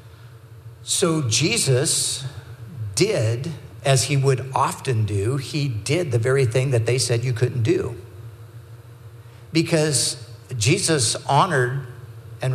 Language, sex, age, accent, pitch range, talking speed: English, male, 50-69, American, 110-135 Hz, 110 wpm